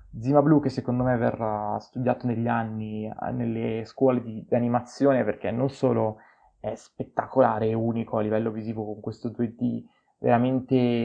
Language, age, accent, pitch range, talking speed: Italian, 20-39, native, 120-140 Hz, 150 wpm